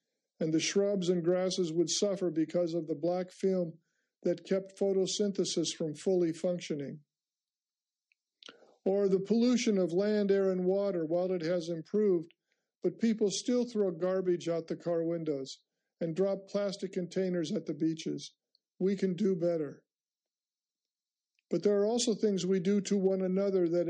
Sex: male